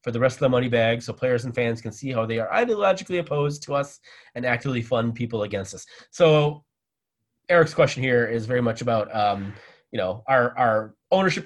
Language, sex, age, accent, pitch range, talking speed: English, male, 30-49, American, 115-155 Hz, 210 wpm